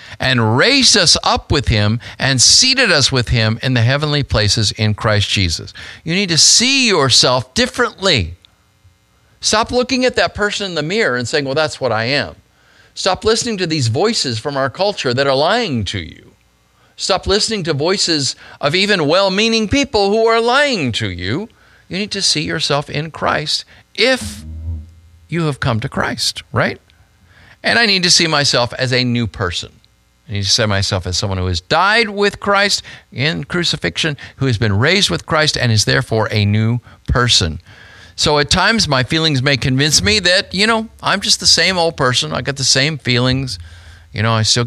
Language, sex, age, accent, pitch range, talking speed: English, male, 50-69, American, 105-165 Hz, 190 wpm